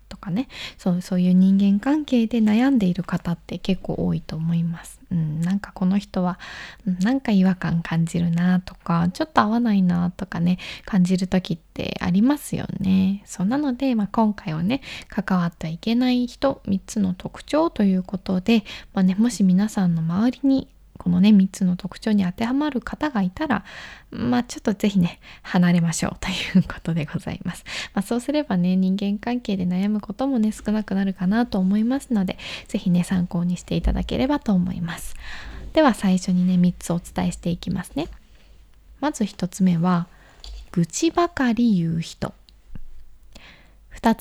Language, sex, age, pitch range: Japanese, female, 20-39, 180-235 Hz